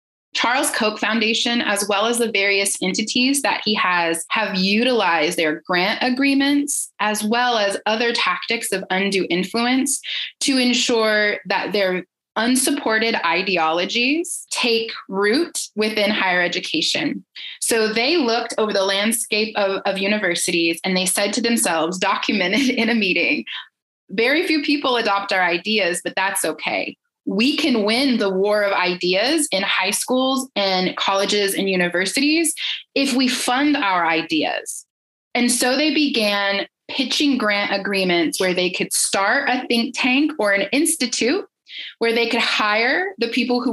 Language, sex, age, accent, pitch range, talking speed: English, female, 20-39, American, 195-260 Hz, 145 wpm